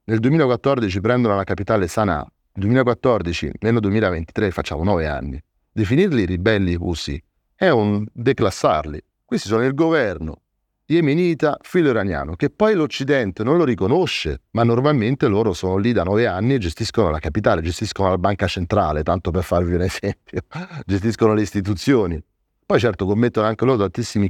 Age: 30-49